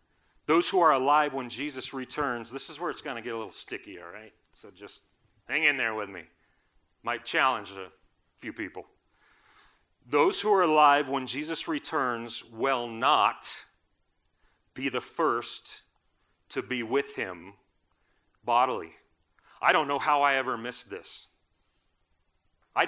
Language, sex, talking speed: English, male, 150 wpm